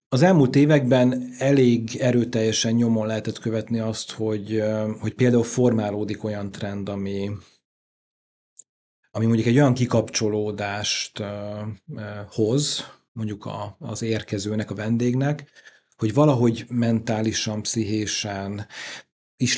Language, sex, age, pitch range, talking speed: Hungarian, male, 40-59, 100-120 Hz, 100 wpm